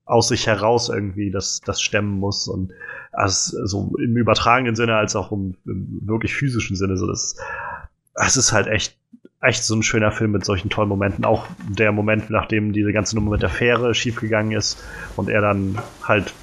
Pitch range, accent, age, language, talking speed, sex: 100-120 Hz, German, 30-49, German, 195 wpm, male